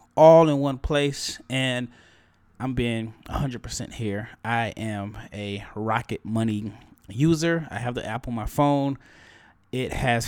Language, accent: English, American